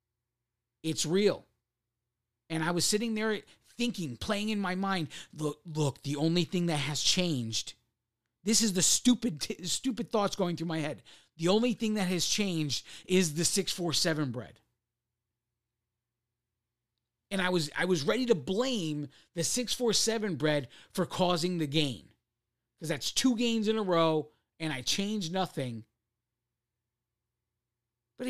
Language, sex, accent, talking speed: English, male, American, 140 wpm